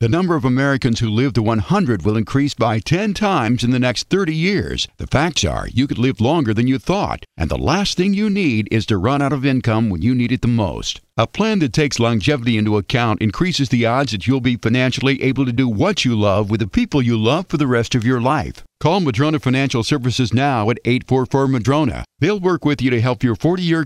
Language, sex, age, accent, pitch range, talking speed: English, male, 50-69, American, 120-150 Hz, 230 wpm